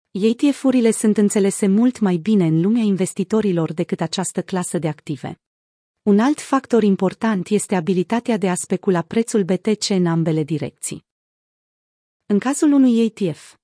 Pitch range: 180-230 Hz